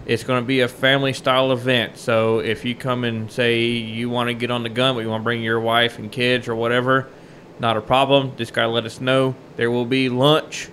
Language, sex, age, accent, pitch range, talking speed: English, male, 20-39, American, 120-140 Hz, 245 wpm